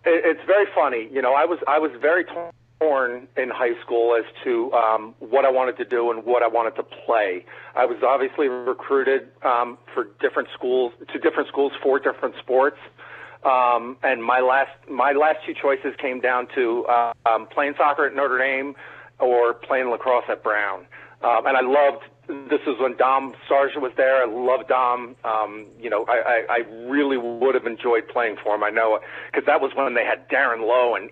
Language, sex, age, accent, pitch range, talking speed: English, male, 40-59, American, 120-140 Hz, 200 wpm